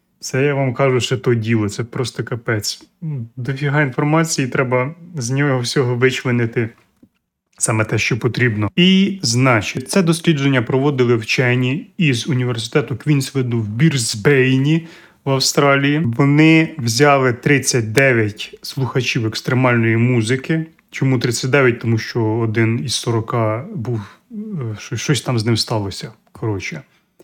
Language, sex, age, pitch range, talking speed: Ukrainian, male, 30-49, 120-150 Hz, 120 wpm